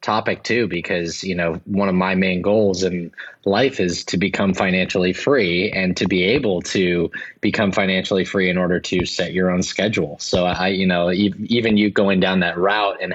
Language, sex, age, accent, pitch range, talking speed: English, male, 20-39, American, 95-105 Hz, 195 wpm